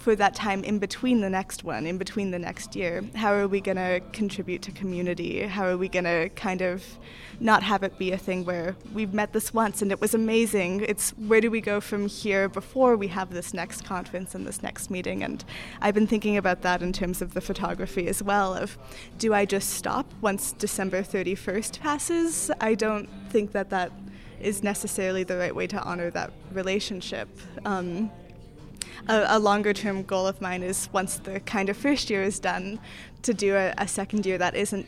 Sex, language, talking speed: female, English, 205 wpm